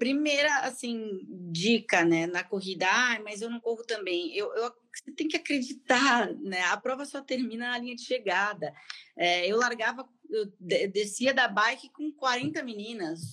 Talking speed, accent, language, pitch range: 165 wpm, Brazilian, Portuguese, 180-240 Hz